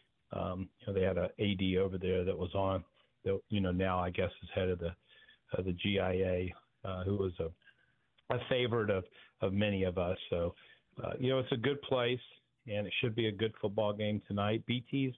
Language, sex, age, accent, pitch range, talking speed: English, male, 50-69, American, 95-115 Hz, 215 wpm